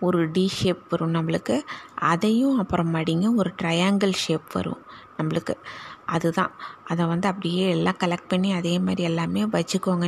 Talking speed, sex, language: 145 wpm, female, Tamil